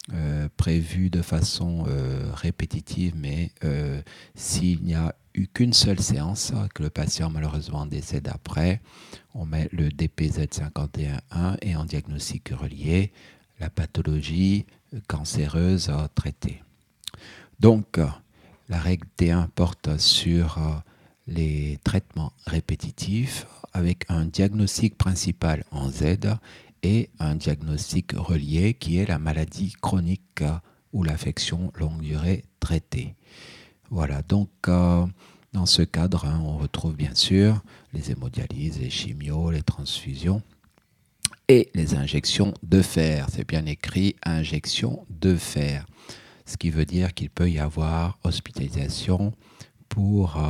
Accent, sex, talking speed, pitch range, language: French, male, 115 wpm, 75-95 Hz, French